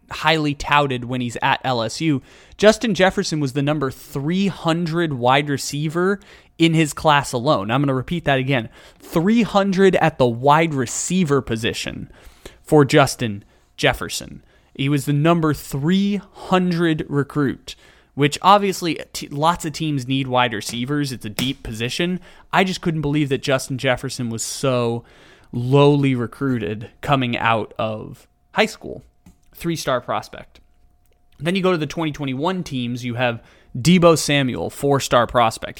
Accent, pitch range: American, 125-160 Hz